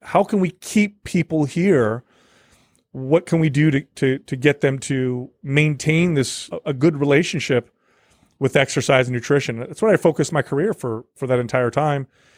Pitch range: 125-150 Hz